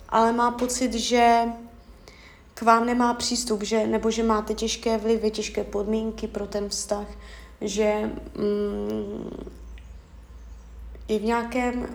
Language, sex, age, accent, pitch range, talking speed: Czech, female, 20-39, native, 205-230 Hz, 120 wpm